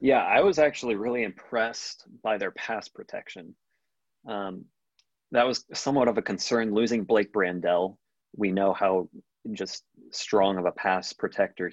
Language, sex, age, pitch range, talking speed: English, male, 20-39, 90-105 Hz, 150 wpm